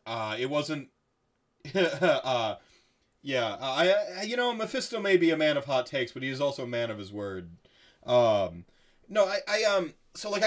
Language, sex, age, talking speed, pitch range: English, male, 30-49, 190 wpm, 100-140 Hz